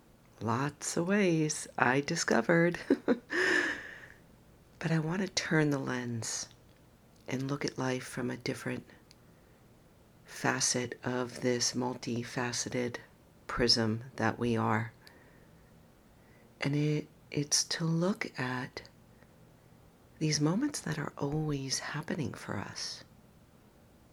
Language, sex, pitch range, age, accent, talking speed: English, female, 120-150 Hz, 50-69, American, 100 wpm